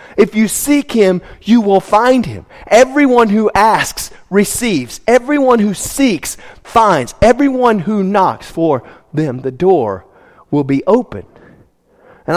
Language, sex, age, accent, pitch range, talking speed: English, male, 40-59, American, 155-215 Hz, 130 wpm